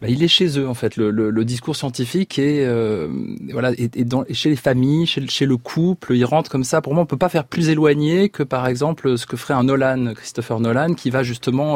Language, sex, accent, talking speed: French, male, French, 245 wpm